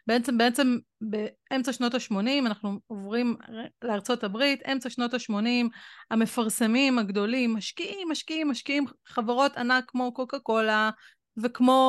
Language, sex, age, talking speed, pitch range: Hebrew, female, 30-49, 110 wpm, 225-285 Hz